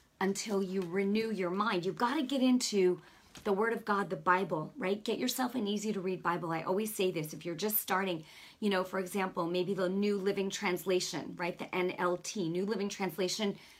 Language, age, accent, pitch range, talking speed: English, 40-59, American, 190-250 Hz, 195 wpm